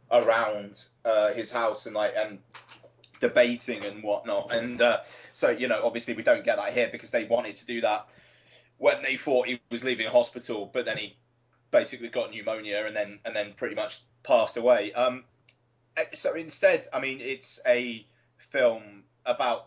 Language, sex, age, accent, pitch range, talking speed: English, male, 30-49, British, 110-130 Hz, 175 wpm